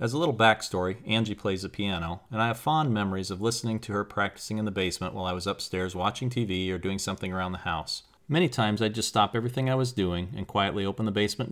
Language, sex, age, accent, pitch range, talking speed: English, male, 40-59, American, 95-115 Hz, 245 wpm